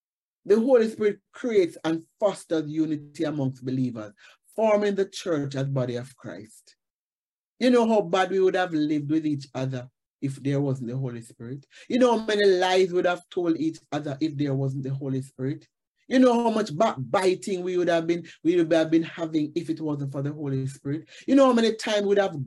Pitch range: 145-205 Hz